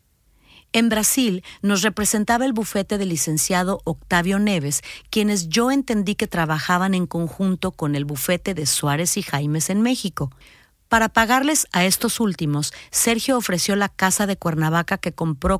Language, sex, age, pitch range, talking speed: Spanish, female, 40-59, 160-215 Hz, 150 wpm